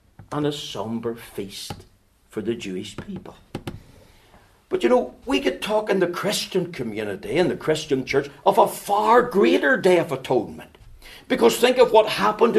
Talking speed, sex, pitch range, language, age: 160 wpm, male, 115-180 Hz, English, 60-79